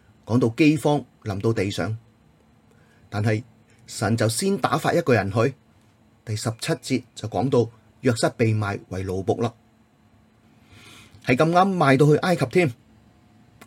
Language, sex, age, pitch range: Chinese, male, 30-49, 110-130 Hz